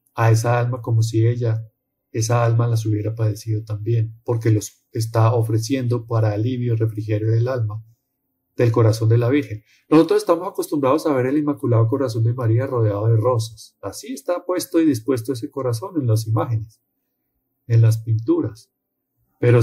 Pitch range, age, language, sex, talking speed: 110-130 Hz, 40-59, Spanish, male, 165 wpm